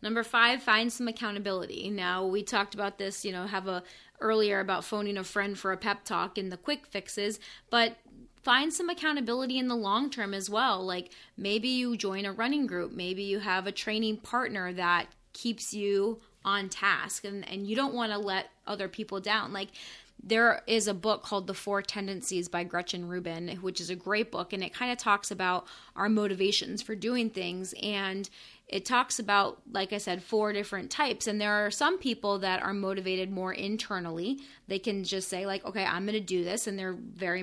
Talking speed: 205 wpm